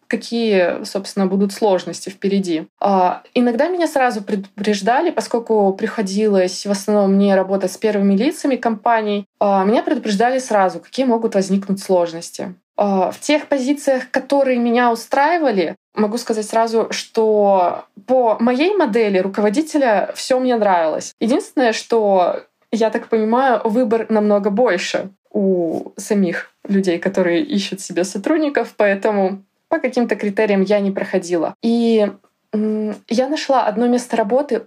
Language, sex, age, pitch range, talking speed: Russian, female, 20-39, 200-250 Hz, 125 wpm